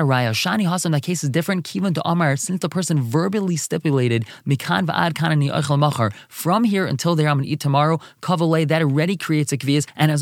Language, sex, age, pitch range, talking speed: English, male, 20-39, 140-175 Hz, 195 wpm